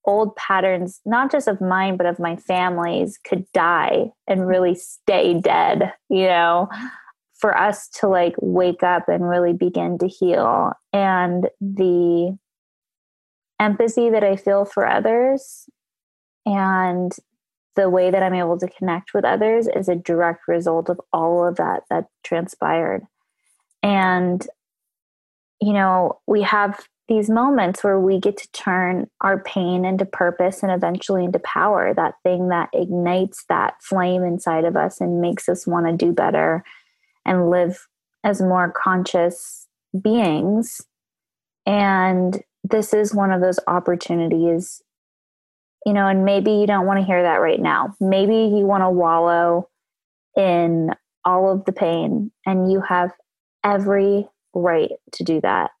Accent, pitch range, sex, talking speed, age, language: American, 180-205 Hz, female, 145 wpm, 20-39, English